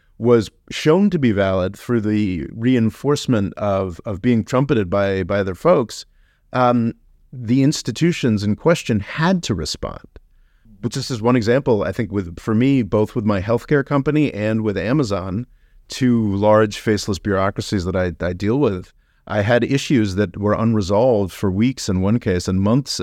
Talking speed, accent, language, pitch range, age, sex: 165 wpm, American, English, 100-125 Hz, 30-49, male